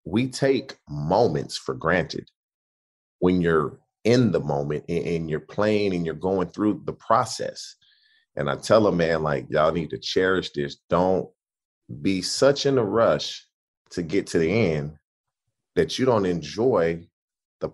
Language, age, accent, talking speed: English, 30-49, American, 155 wpm